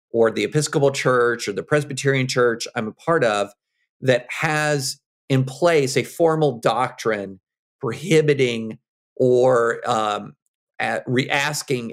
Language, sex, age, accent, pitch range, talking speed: English, male, 50-69, American, 115-140 Hz, 115 wpm